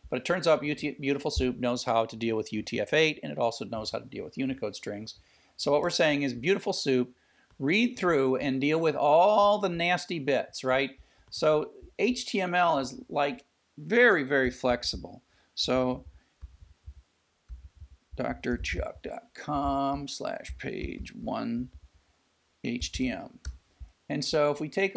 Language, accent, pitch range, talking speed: English, American, 110-160 Hz, 135 wpm